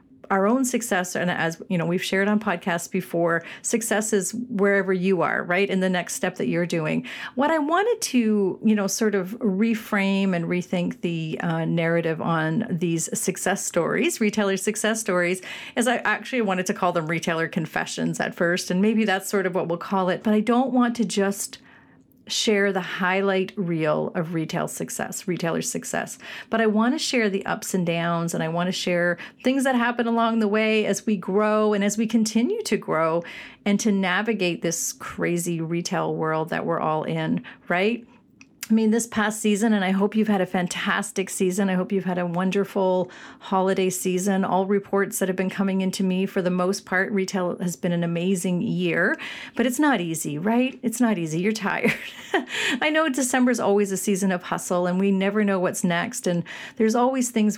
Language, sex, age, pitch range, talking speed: English, female, 40-59, 180-220 Hz, 200 wpm